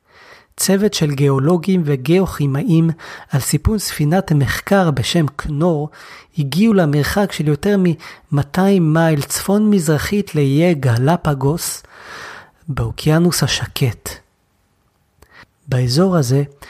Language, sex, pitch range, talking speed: Hebrew, male, 140-185 Hz, 85 wpm